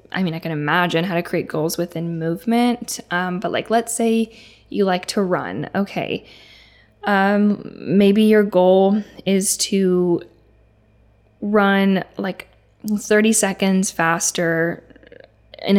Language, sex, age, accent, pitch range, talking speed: English, female, 10-29, American, 170-210 Hz, 125 wpm